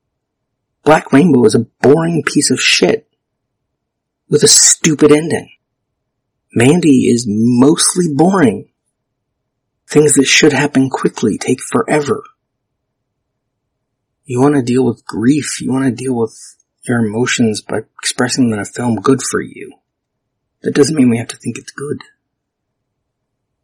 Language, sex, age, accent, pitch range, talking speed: English, male, 30-49, American, 115-135 Hz, 135 wpm